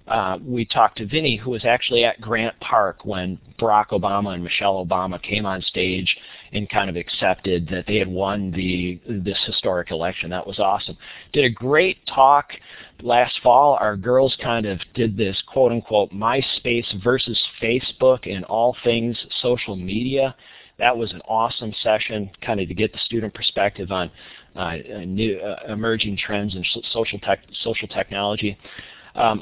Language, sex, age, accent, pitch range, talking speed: English, male, 40-59, American, 95-120 Hz, 165 wpm